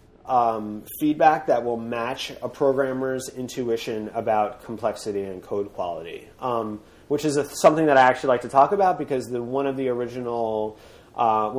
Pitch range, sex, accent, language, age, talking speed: 115-145 Hz, male, American, English, 30-49, 165 wpm